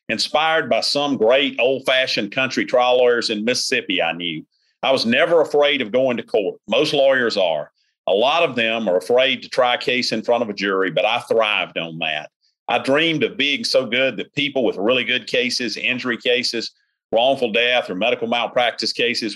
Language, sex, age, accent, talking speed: English, male, 40-59, American, 195 wpm